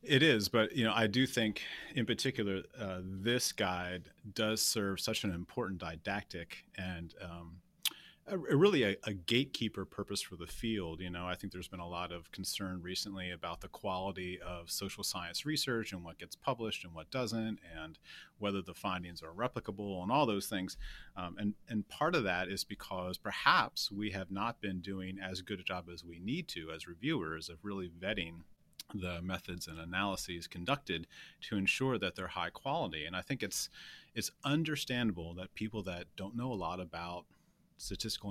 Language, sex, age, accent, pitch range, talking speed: English, male, 30-49, American, 90-110 Hz, 185 wpm